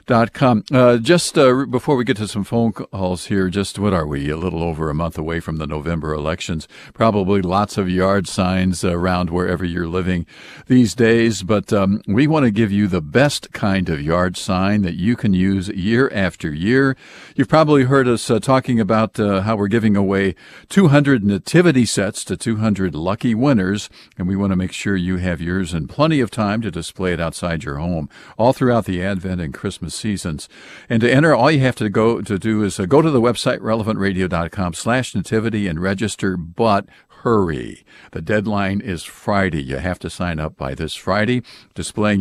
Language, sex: English, male